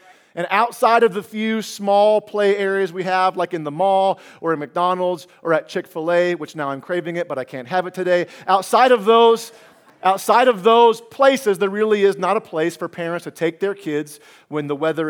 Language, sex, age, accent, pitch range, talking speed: English, male, 40-59, American, 140-185 Hz, 210 wpm